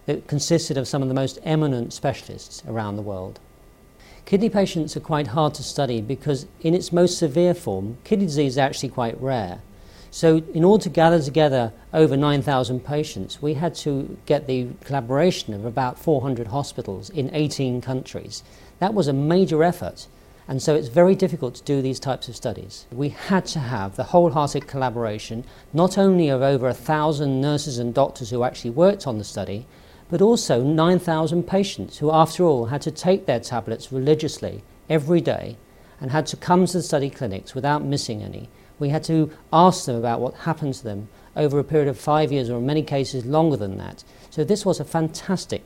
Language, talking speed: English, 190 wpm